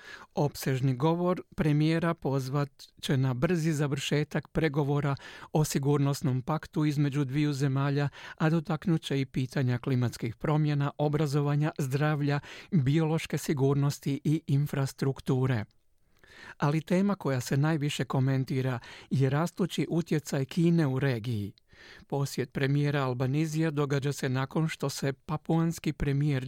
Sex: male